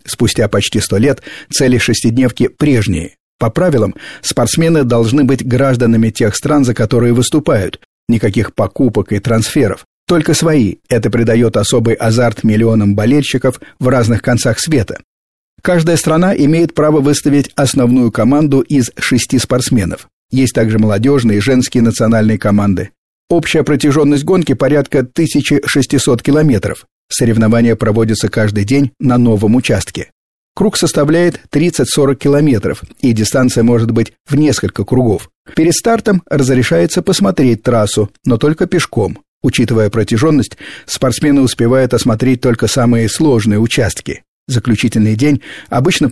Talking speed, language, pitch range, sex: 125 wpm, Russian, 115-145 Hz, male